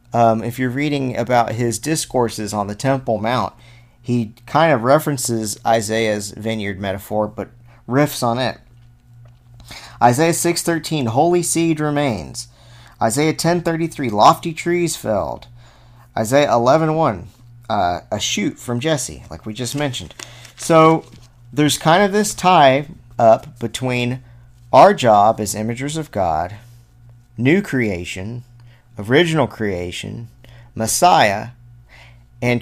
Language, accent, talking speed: English, American, 115 wpm